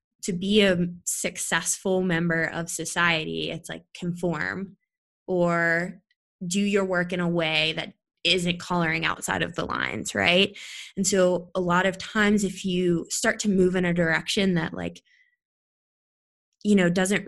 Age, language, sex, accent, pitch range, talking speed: 20-39, English, female, American, 170-200 Hz, 155 wpm